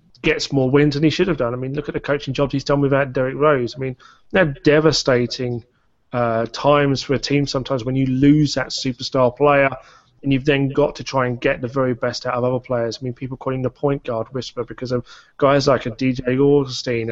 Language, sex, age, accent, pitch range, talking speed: English, male, 30-49, British, 125-145 Hz, 230 wpm